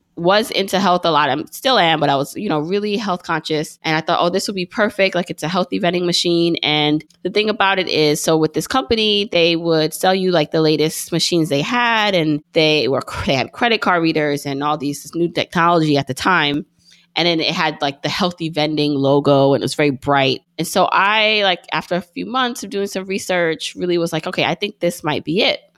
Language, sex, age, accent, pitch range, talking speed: English, female, 20-39, American, 150-185 Hz, 235 wpm